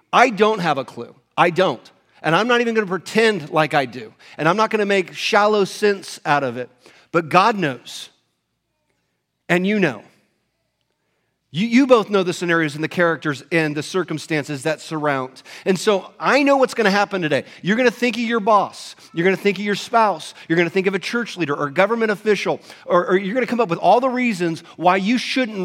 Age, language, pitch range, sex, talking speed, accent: 40-59, English, 150-205 Hz, male, 215 wpm, American